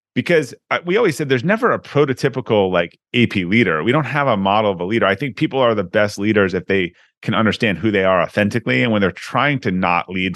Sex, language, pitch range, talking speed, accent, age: male, English, 95-120 Hz, 235 wpm, American, 30-49